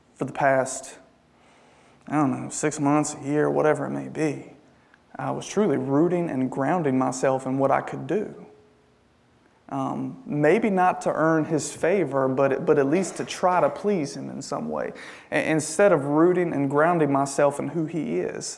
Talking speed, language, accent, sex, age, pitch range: 185 wpm, English, American, male, 30-49, 135-170 Hz